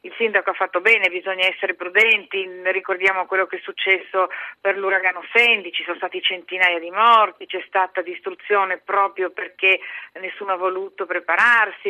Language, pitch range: Italian, 185-215 Hz